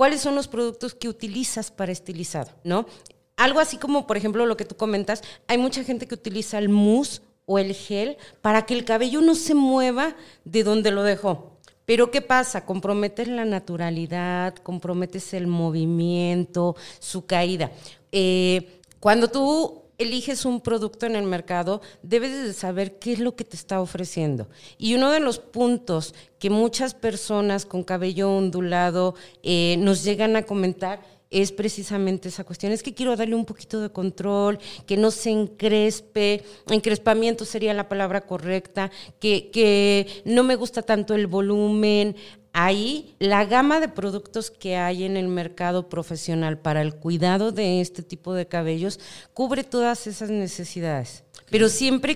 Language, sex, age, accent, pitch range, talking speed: Spanish, female, 40-59, Mexican, 185-230 Hz, 160 wpm